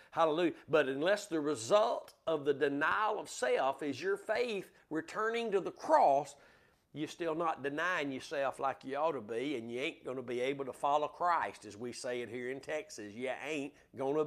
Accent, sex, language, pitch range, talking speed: American, male, English, 145-195 Hz, 200 wpm